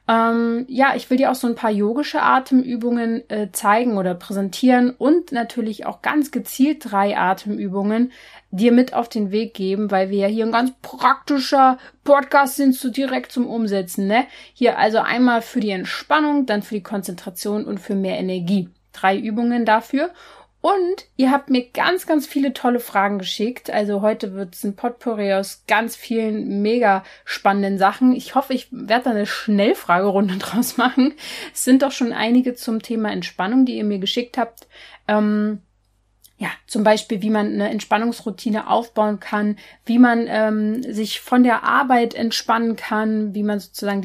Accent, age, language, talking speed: German, 30-49, German, 170 wpm